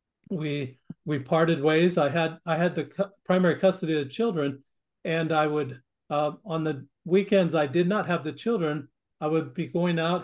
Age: 50-69